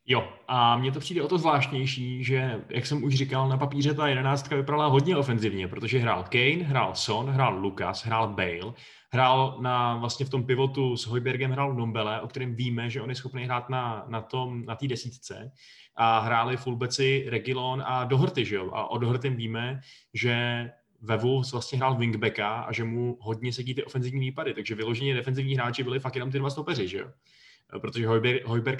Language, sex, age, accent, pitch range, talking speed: Czech, male, 20-39, native, 115-135 Hz, 190 wpm